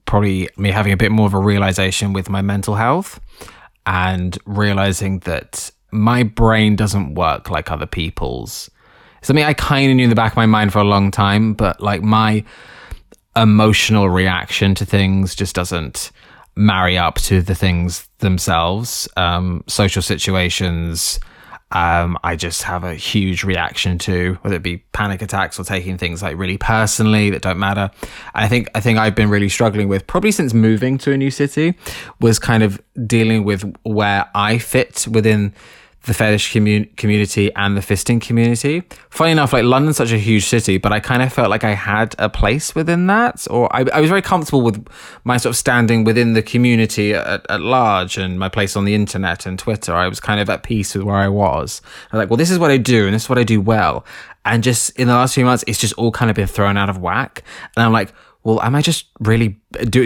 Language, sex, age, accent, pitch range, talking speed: English, male, 20-39, British, 95-115 Hz, 210 wpm